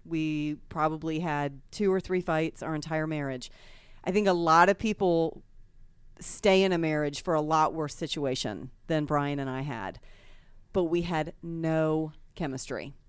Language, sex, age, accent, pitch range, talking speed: English, female, 40-59, American, 155-200 Hz, 160 wpm